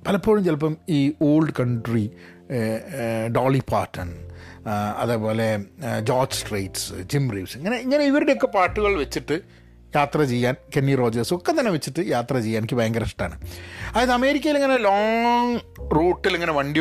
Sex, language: male, Malayalam